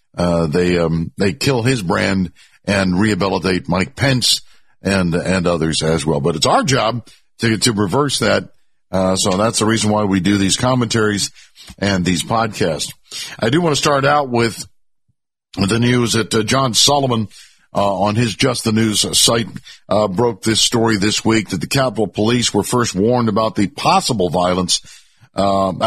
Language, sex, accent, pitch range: English, male, American, 100-130 Hz